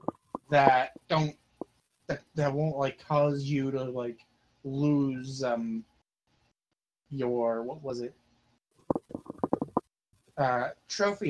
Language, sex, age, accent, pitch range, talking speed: English, male, 20-39, American, 125-155 Hz, 95 wpm